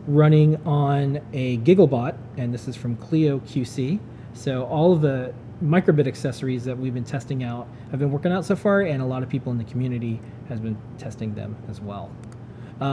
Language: English